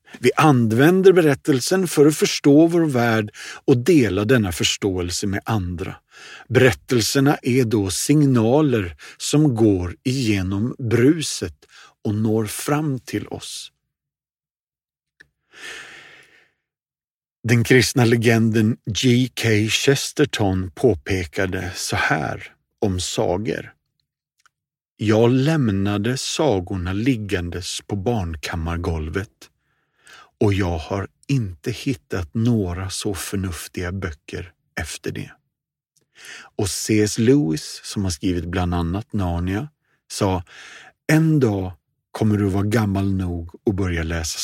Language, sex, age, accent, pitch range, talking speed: Swedish, male, 50-69, native, 95-135 Hz, 100 wpm